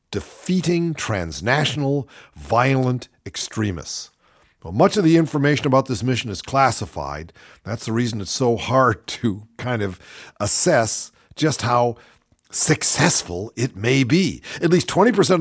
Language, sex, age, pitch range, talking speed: English, male, 50-69, 100-140 Hz, 125 wpm